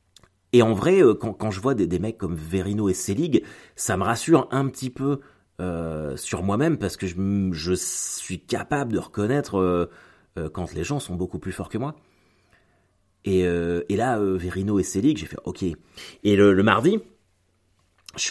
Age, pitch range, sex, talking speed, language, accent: 30-49, 90-125 Hz, male, 195 wpm, French, French